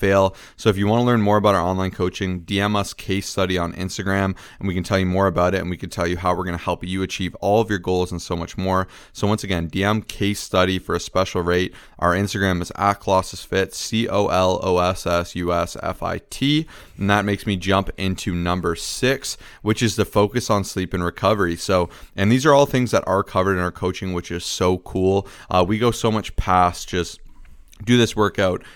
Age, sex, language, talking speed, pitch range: 20-39, male, English, 220 wpm, 90-105 Hz